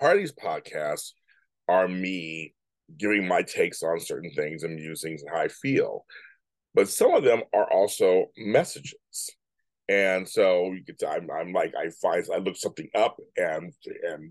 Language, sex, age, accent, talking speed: English, male, 30-49, American, 170 wpm